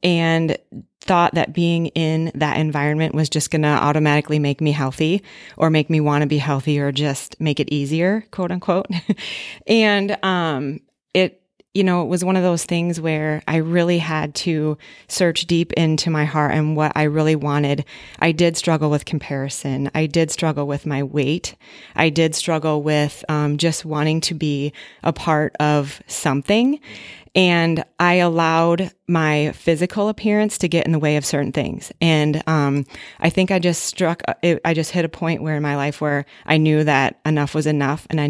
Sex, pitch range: female, 150-170 Hz